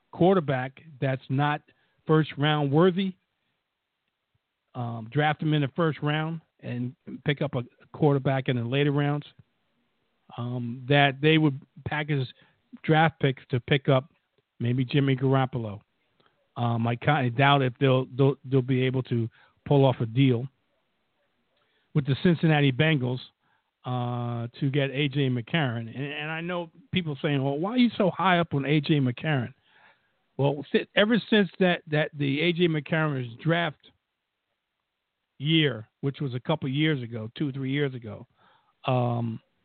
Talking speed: 150 wpm